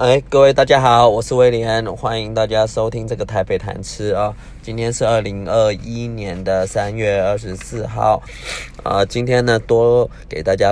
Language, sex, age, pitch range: Chinese, male, 20-39, 100-120 Hz